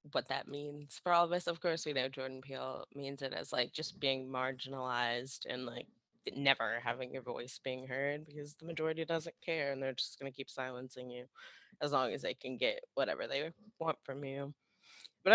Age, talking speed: 20-39, 205 wpm